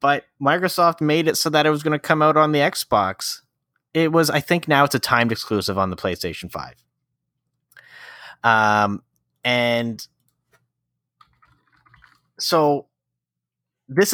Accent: American